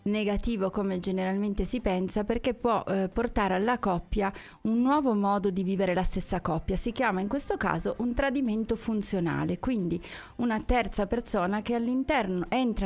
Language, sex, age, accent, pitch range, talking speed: Italian, female, 30-49, native, 180-220 Hz, 155 wpm